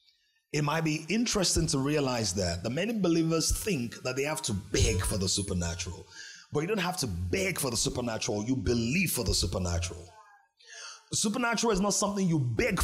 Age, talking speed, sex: 30-49, 185 wpm, male